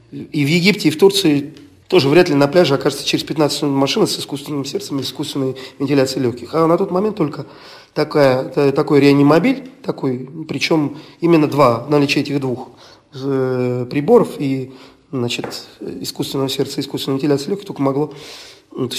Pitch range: 140-170 Hz